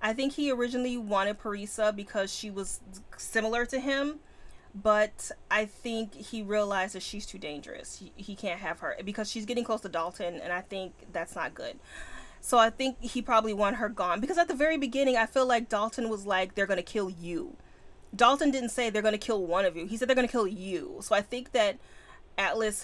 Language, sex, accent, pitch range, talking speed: English, female, American, 200-250 Hz, 220 wpm